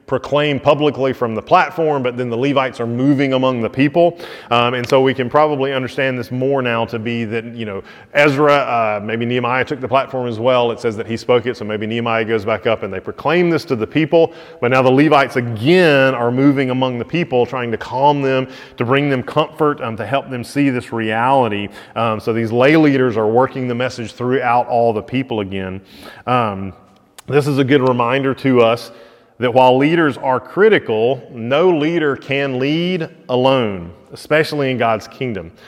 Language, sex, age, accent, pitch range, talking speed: English, male, 30-49, American, 115-140 Hz, 200 wpm